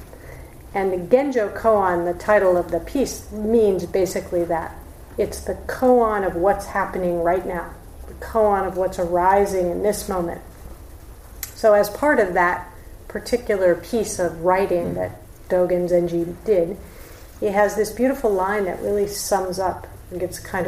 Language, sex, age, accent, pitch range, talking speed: English, female, 40-59, American, 170-210 Hz, 155 wpm